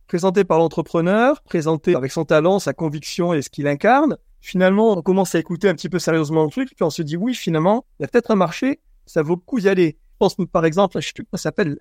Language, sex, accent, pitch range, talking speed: French, male, French, 150-190 Hz, 235 wpm